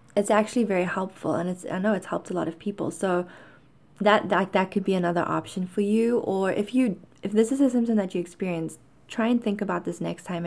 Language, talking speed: English, 240 wpm